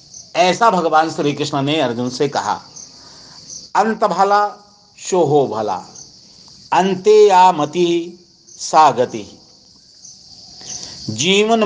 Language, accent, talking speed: Hindi, native, 85 wpm